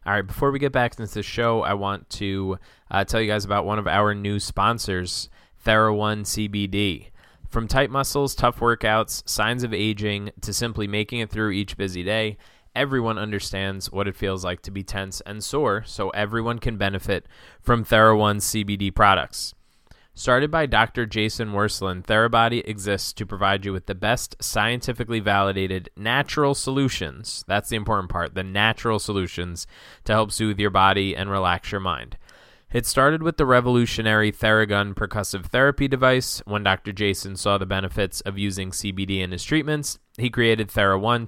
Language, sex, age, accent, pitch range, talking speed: English, male, 20-39, American, 100-115 Hz, 170 wpm